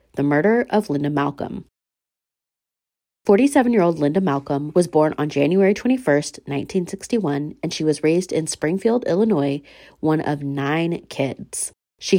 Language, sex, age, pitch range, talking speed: English, female, 30-49, 145-195 Hz, 130 wpm